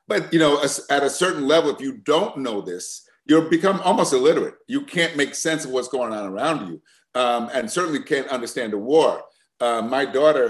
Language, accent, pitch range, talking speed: English, American, 130-205 Hz, 210 wpm